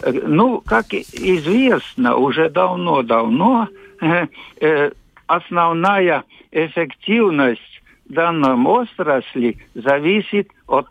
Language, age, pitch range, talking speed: Russian, 60-79, 135-195 Hz, 60 wpm